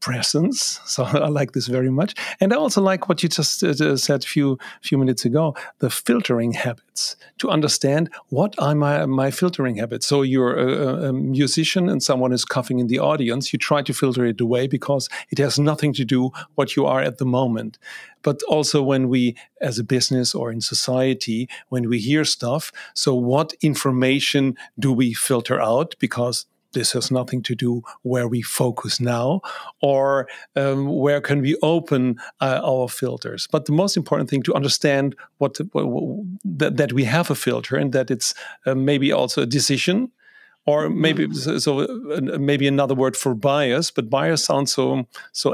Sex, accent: male, German